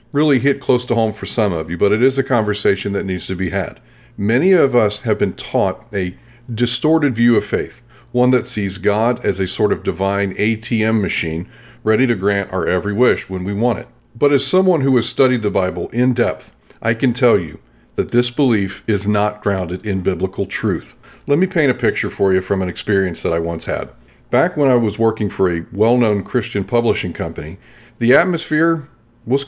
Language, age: English, 40-59